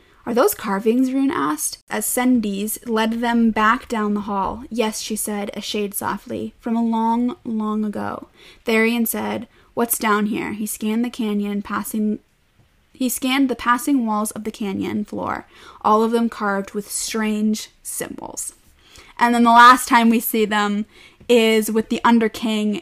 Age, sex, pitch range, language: 20-39, female, 215-240 Hz, English